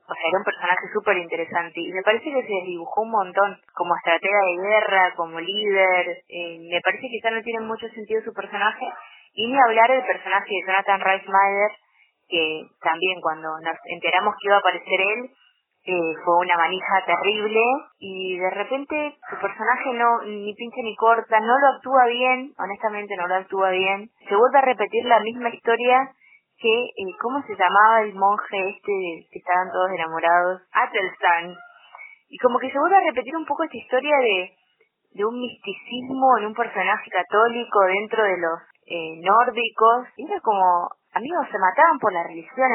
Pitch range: 185-235 Hz